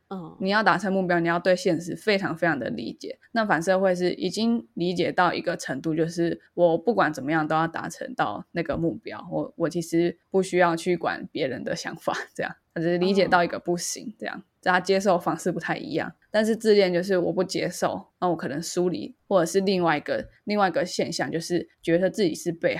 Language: Chinese